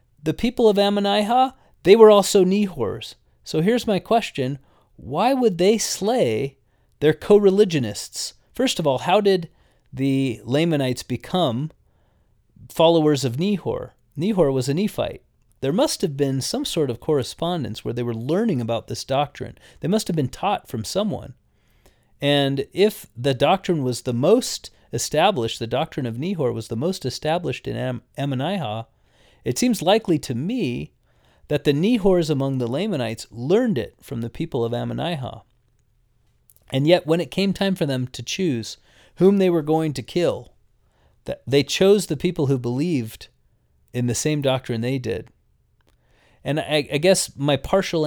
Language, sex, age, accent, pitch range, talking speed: English, male, 30-49, American, 120-180 Hz, 155 wpm